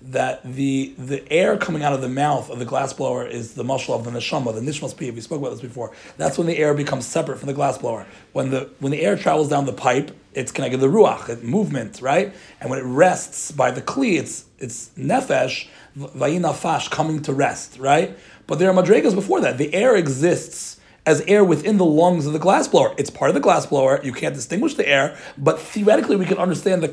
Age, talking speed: 30-49, 220 wpm